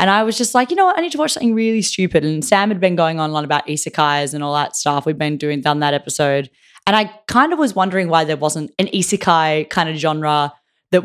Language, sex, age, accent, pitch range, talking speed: English, female, 10-29, Australian, 150-195 Hz, 275 wpm